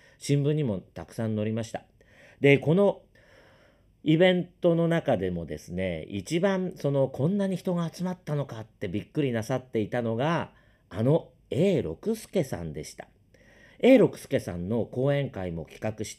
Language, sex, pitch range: Japanese, male, 100-140 Hz